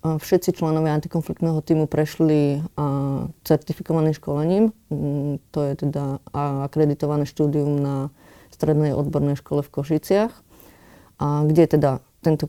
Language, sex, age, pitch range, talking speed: Slovak, female, 30-49, 150-170 Hz, 110 wpm